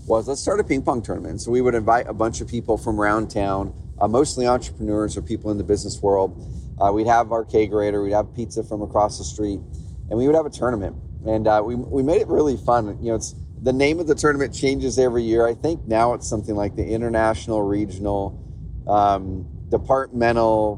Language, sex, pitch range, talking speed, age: English, male, 100-120 Hz, 215 wpm, 30-49